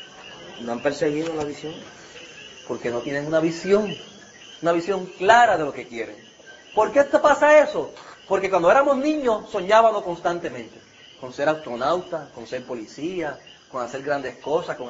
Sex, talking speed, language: male, 155 wpm, Spanish